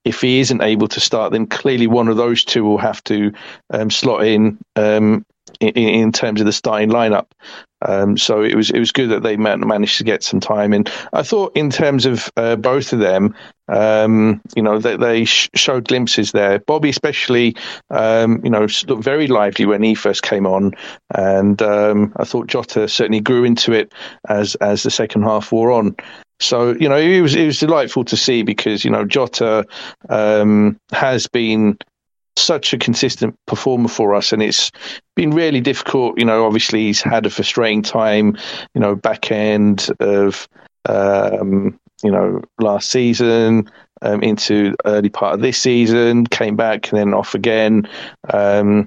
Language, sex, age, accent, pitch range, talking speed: English, male, 40-59, British, 105-120 Hz, 185 wpm